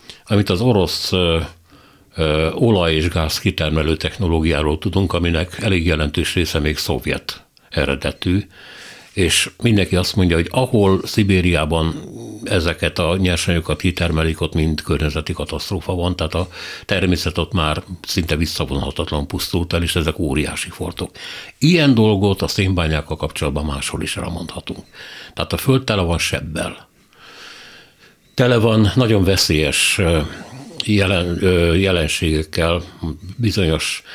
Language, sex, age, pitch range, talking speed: Hungarian, male, 60-79, 80-95 Hz, 120 wpm